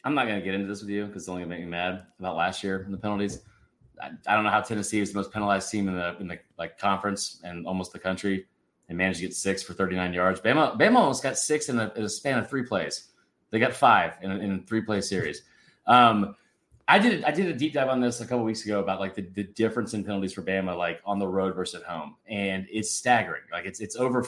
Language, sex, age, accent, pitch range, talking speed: English, male, 20-39, American, 95-130 Hz, 270 wpm